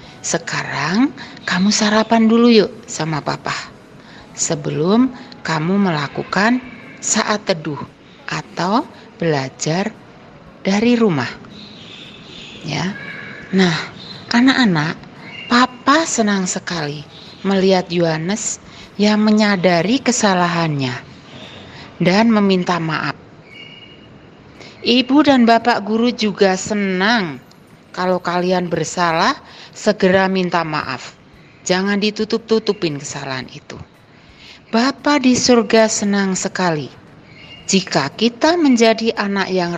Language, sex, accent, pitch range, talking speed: Indonesian, female, native, 170-225 Hz, 85 wpm